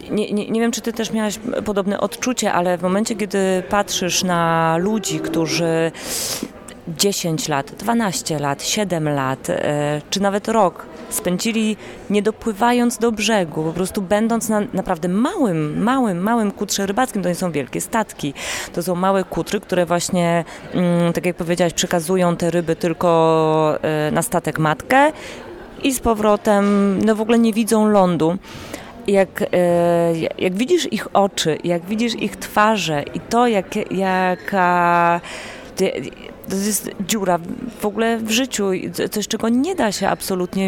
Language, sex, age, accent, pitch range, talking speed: Polish, female, 30-49, native, 175-210 Hz, 140 wpm